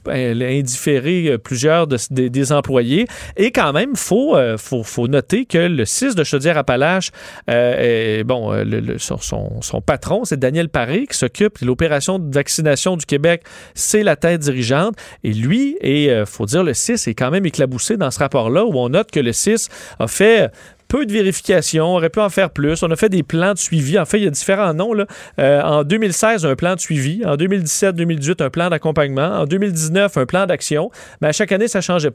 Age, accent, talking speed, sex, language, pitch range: 40-59, Canadian, 210 wpm, male, French, 135-190 Hz